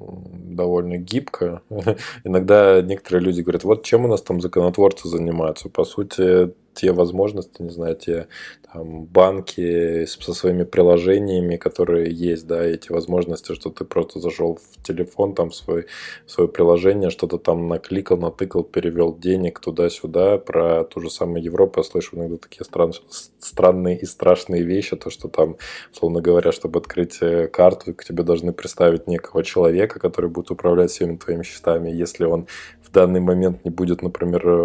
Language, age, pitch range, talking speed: Russian, 20-39, 85-95 Hz, 150 wpm